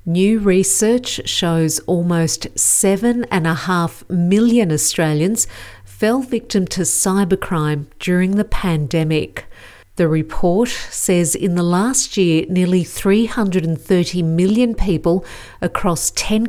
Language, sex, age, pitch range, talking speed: English, female, 50-69, 160-205 Hz, 100 wpm